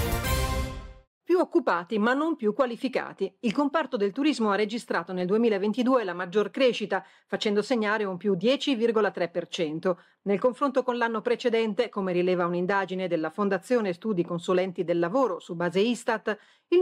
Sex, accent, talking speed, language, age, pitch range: female, native, 140 wpm, Italian, 40-59, 185-245 Hz